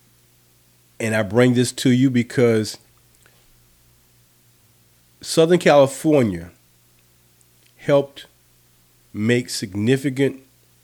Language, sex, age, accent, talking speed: English, male, 50-69, American, 65 wpm